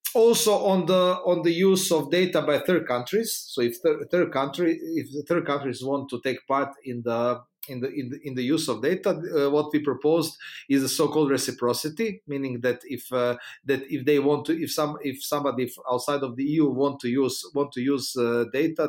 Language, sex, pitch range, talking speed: English, male, 135-170 Hz, 215 wpm